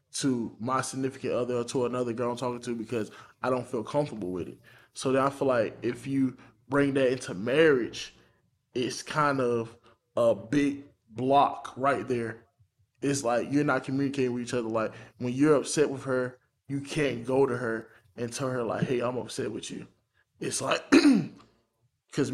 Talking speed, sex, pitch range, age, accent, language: 185 wpm, male, 115-130 Hz, 20-39, American, English